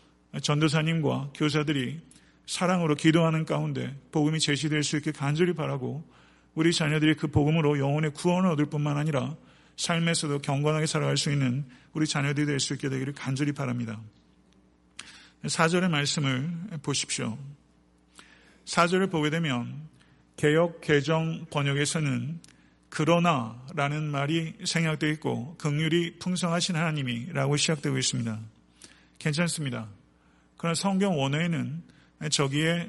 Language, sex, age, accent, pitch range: Korean, male, 40-59, native, 135-165 Hz